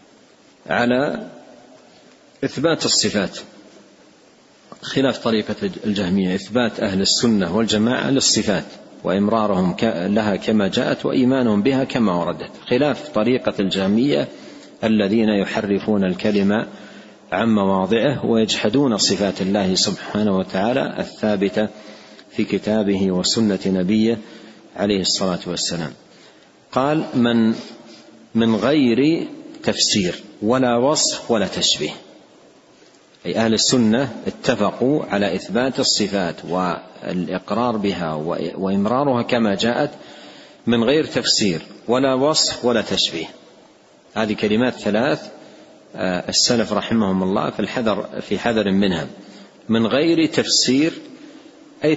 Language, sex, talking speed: Arabic, male, 95 wpm